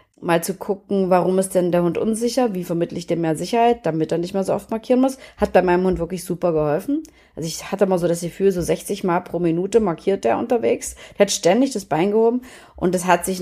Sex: female